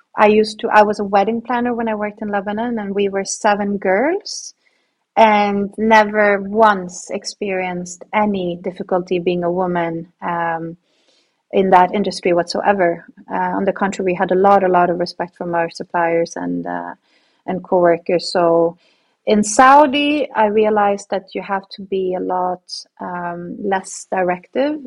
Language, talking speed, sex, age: English, 160 wpm, female, 30-49